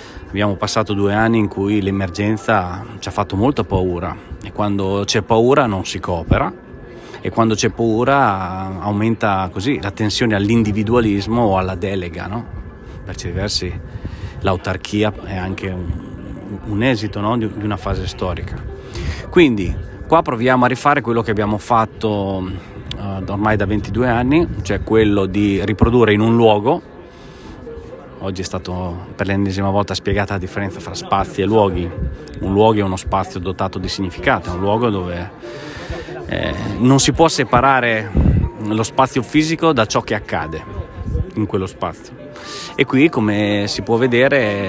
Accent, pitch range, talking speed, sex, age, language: native, 95-115 Hz, 150 wpm, male, 30-49, Italian